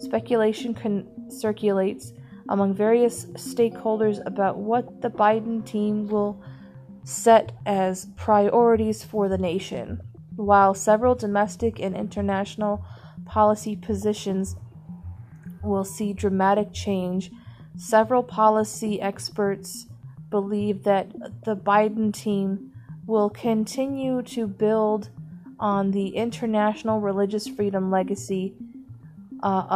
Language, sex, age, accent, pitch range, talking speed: English, female, 30-49, American, 185-220 Hz, 95 wpm